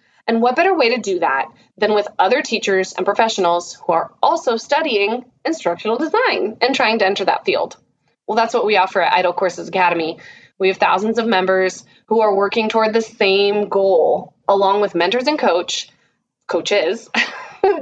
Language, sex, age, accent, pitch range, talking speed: English, female, 20-39, American, 185-230 Hz, 180 wpm